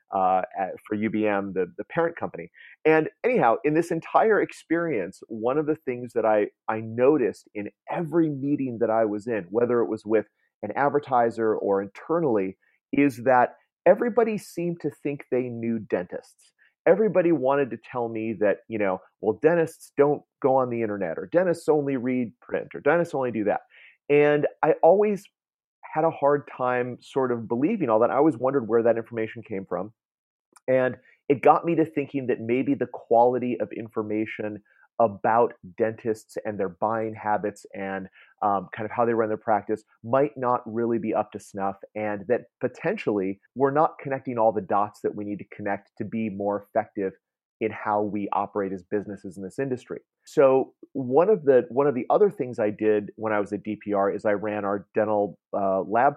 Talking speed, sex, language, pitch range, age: 185 wpm, male, English, 105-140 Hz, 30-49